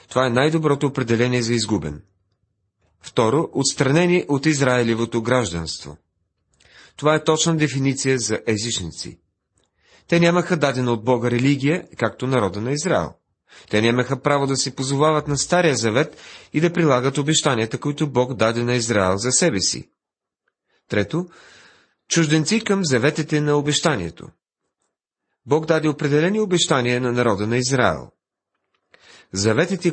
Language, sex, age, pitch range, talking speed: Bulgarian, male, 40-59, 110-150 Hz, 130 wpm